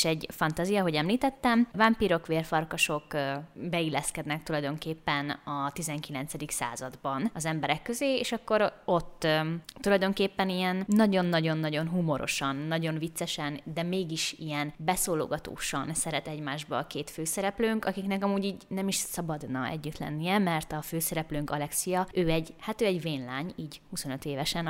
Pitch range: 150-185 Hz